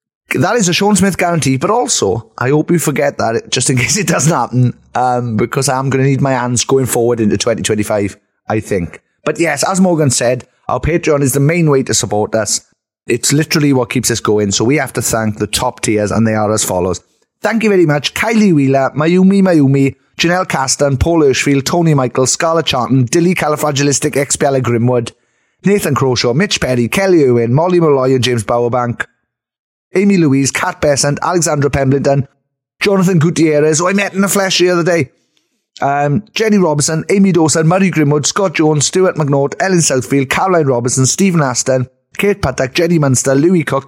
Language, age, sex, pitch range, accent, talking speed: English, 30-49, male, 125-170 Hz, British, 185 wpm